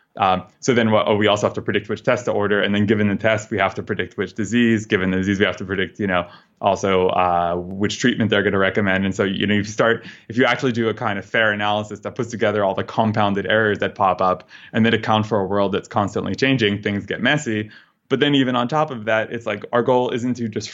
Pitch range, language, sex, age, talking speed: 100-115 Hz, English, male, 20-39, 265 wpm